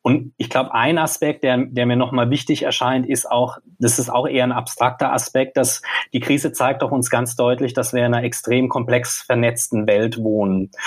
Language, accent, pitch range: German, German, 115-135 Hz